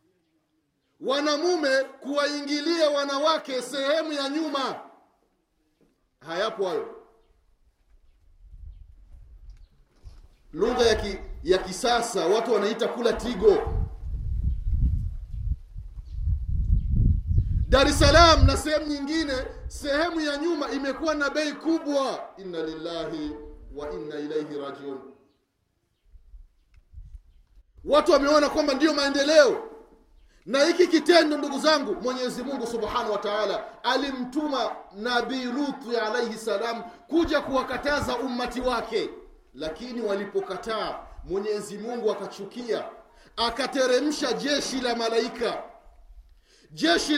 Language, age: Swahili, 40-59